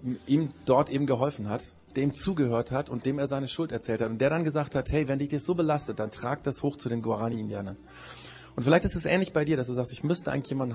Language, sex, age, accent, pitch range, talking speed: German, male, 30-49, German, 110-140 Hz, 260 wpm